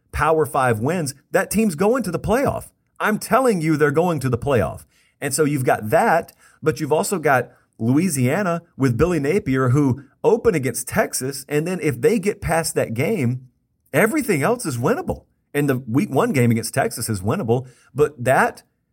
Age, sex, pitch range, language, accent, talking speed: 40-59, male, 115-150 Hz, English, American, 180 wpm